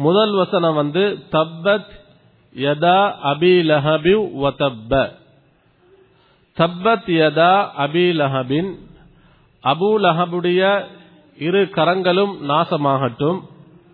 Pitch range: 150-195 Hz